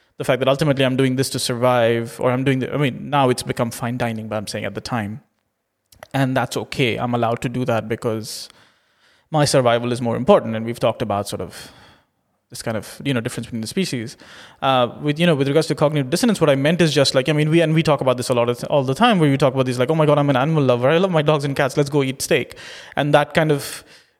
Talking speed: 275 wpm